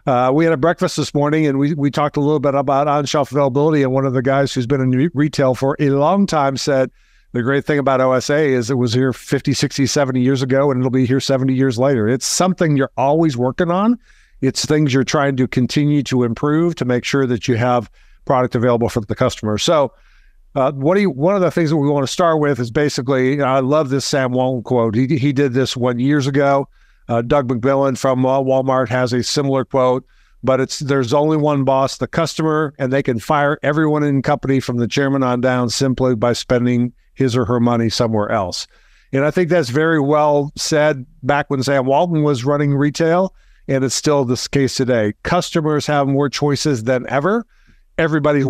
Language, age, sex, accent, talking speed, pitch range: English, 50-69, male, American, 215 wpm, 130-150 Hz